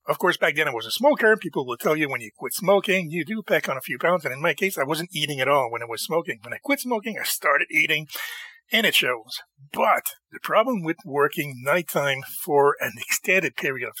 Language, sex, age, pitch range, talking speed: English, male, 40-59, 140-230 Hz, 245 wpm